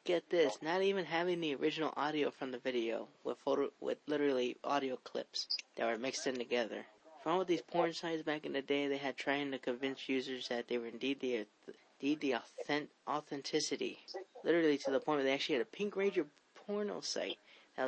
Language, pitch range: English, 130-175 Hz